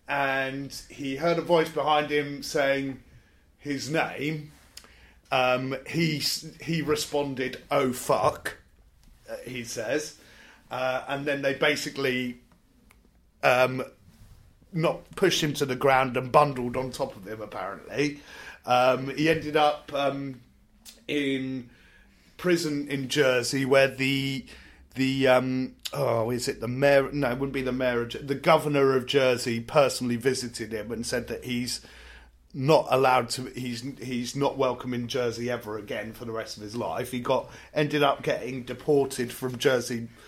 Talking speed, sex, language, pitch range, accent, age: 145 wpm, male, English, 120-140 Hz, British, 30-49